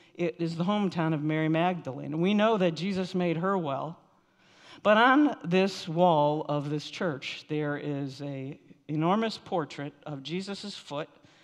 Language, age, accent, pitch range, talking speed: English, 50-69, American, 155-190 Hz, 150 wpm